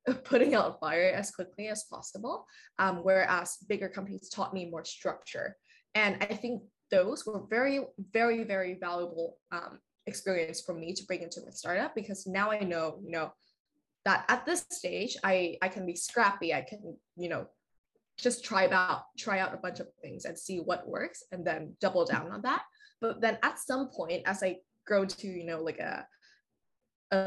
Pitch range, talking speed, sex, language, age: 180-235 Hz, 185 wpm, female, English, 10-29